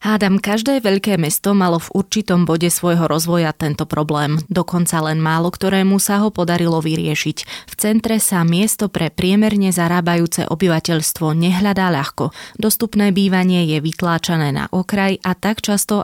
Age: 20-39